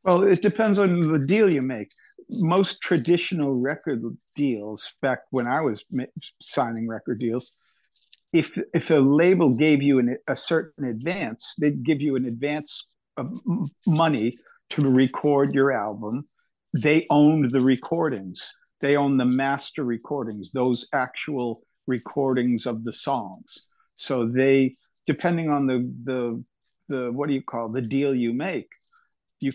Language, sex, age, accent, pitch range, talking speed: English, male, 50-69, American, 125-150 Hz, 145 wpm